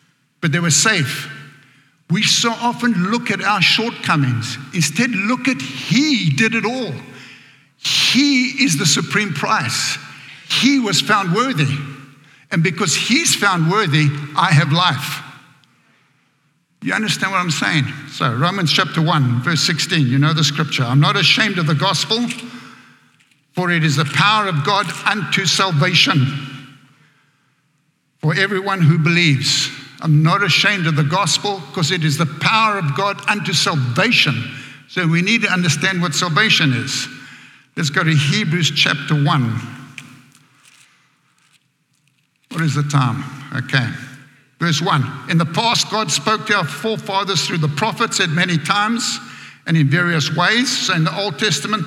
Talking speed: 150 wpm